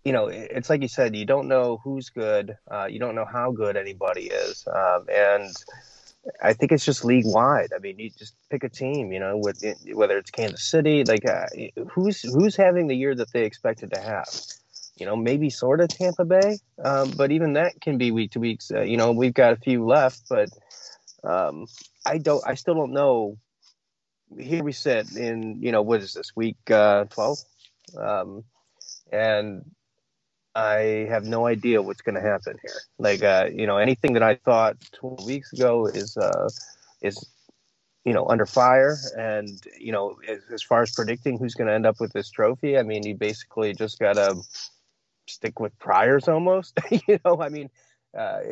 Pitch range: 110-145 Hz